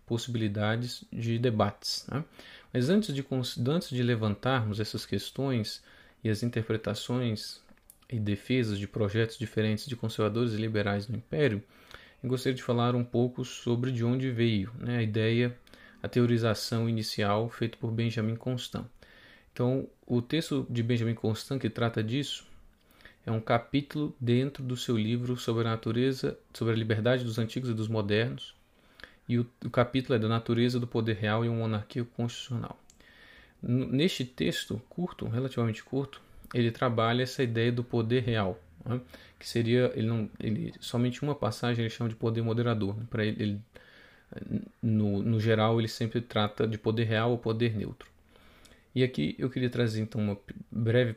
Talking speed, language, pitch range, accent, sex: 160 wpm, Portuguese, 110-125 Hz, Brazilian, male